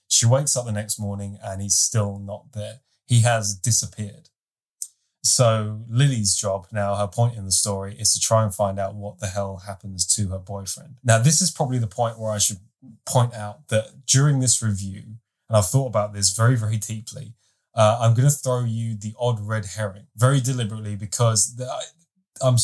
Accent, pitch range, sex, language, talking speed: British, 105-120 Hz, male, English, 195 wpm